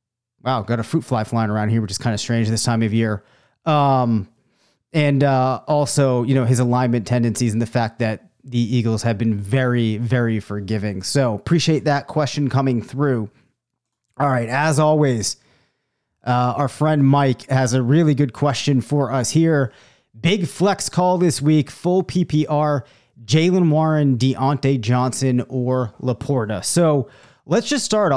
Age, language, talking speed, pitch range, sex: 30-49, English, 160 wpm, 120-150 Hz, male